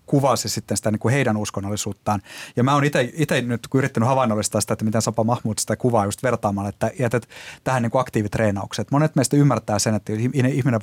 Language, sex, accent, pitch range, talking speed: Finnish, male, native, 105-130 Hz, 195 wpm